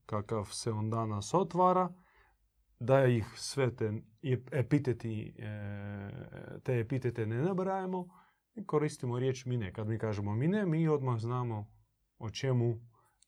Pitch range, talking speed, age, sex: 110-150 Hz, 120 wpm, 30-49, male